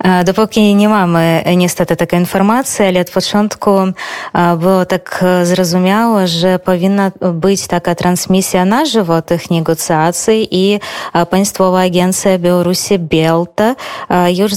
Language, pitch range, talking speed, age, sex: Polish, 175-200 Hz, 110 wpm, 20-39, female